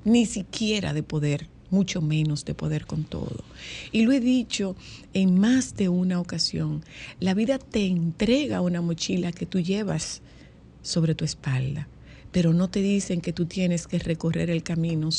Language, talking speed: Spanish, 165 wpm